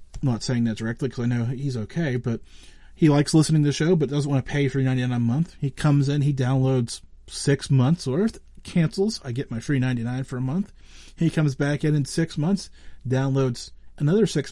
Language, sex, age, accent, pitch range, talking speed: English, male, 40-59, American, 100-155 Hz, 215 wpm